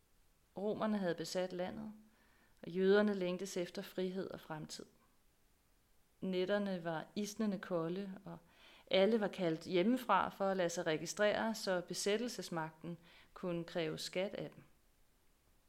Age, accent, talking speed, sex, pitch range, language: 30-49, native, 120 wpm, female, 170-210 Hz, Danish